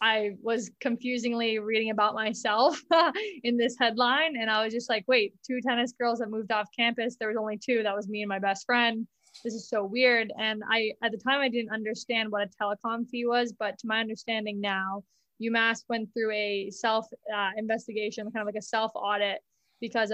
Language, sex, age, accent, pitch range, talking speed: English, female, 20-39, American, 210-235 Hz, 205 wpm